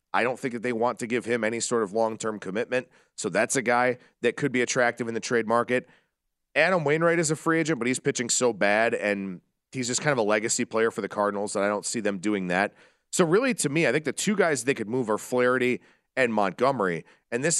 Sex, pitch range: male, 110-145 Hz